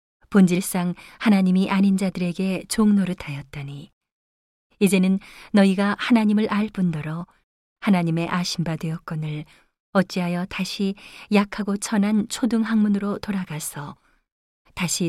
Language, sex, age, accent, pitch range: Korean, female, 40-59, native, 175-205 Hz